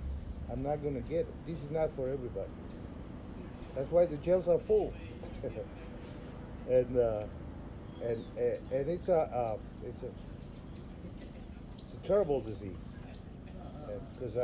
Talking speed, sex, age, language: 130 wpm, male, 50-69, English